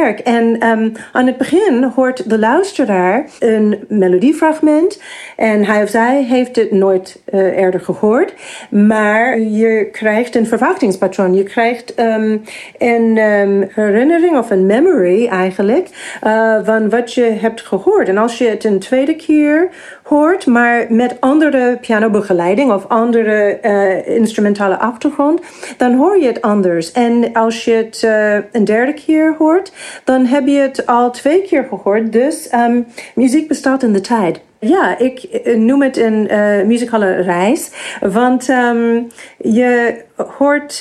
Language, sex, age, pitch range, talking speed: Dutch, female, 40-59, 215-275 Hz, 145 wpm